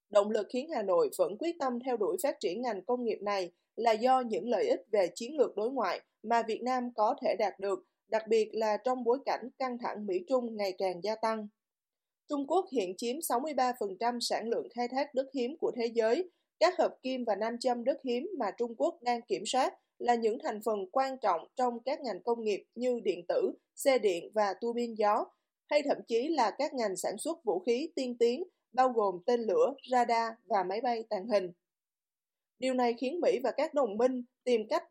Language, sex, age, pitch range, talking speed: Vietnamese, female, 20-39, 225-300 Hz, 215 wpm